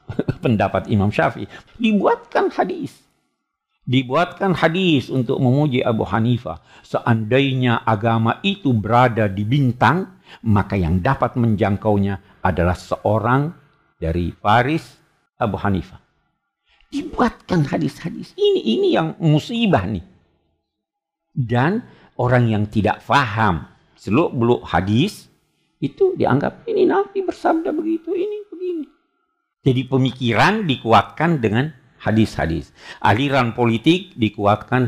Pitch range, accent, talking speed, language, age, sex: 105-165 Hz, native, 100 wpm, Indonesian, 50-69, male